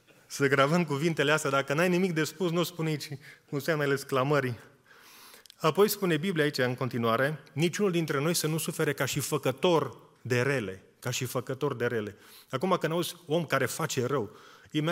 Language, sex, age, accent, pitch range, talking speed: Romanian, male, 30-49, native, 125-160 Hz, 175 wpm